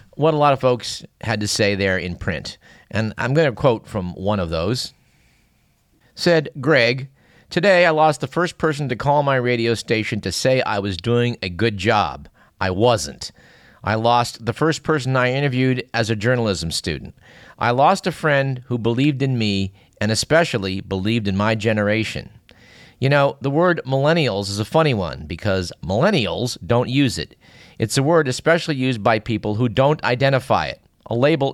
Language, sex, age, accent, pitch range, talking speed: English, male, 50-69, American, 105-140 Hz, 180 wpm